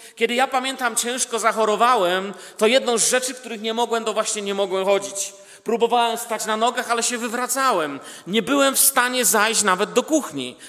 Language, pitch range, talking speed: Polish, 195-240 Hz, 180 wpm